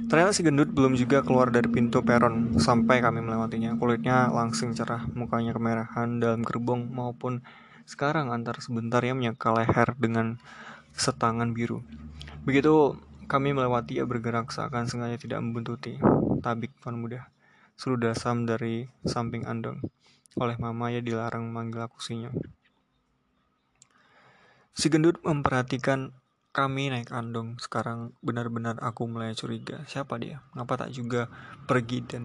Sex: male